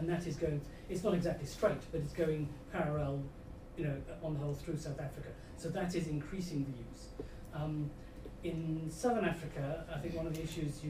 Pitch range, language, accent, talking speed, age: 145-170 Hz, English, British, 205 wpm, 40-59